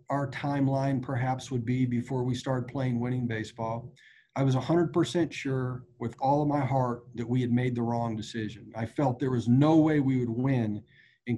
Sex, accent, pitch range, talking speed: male, American, 125-150 Hz, 195 wpm